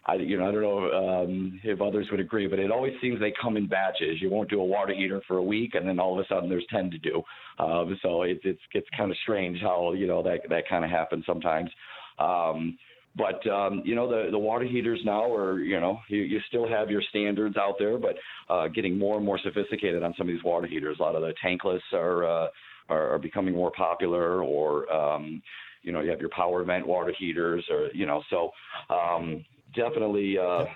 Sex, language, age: male, English, 50-69